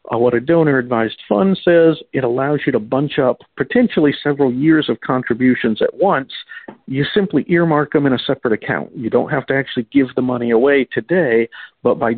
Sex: male